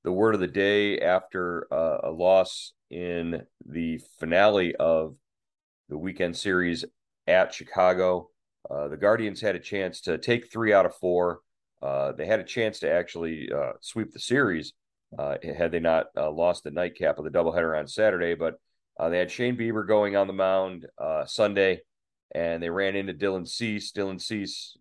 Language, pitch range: English, 85-105 Hz